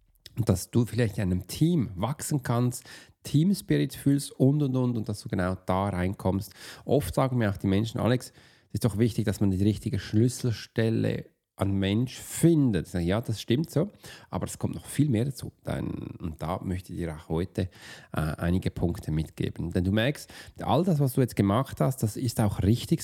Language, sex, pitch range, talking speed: German, male, 105-145 Hz, 195 wpm